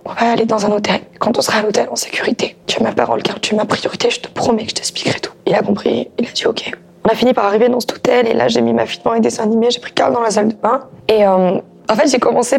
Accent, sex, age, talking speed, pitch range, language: French, female, 20-39, 325 wpm, 195-255 Hz, French